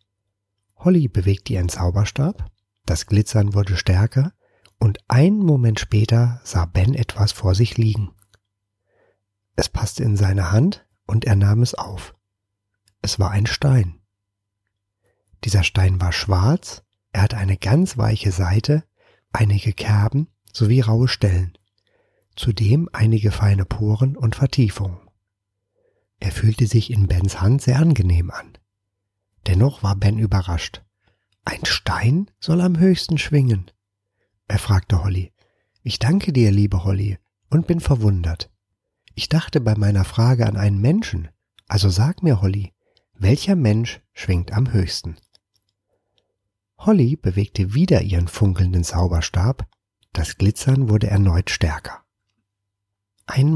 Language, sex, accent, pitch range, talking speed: German, male, German, 100-115 Hz, 125 wpm